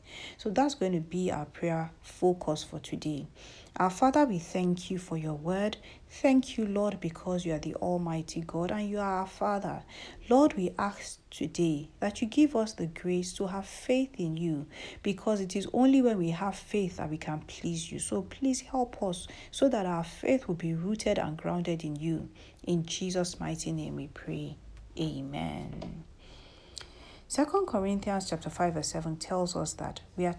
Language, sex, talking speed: English, female, 185 wpm